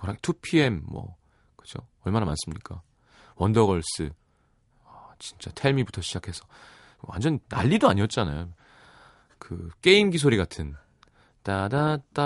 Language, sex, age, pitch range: Korean, male, 30-49, 90-125 Hz